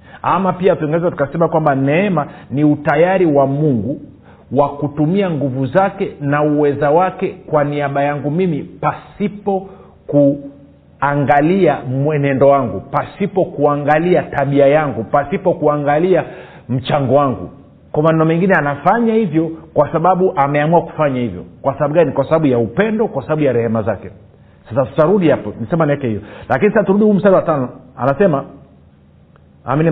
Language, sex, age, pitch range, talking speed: Swahili, male, 50-69, 140-180 Hz, 135 wpm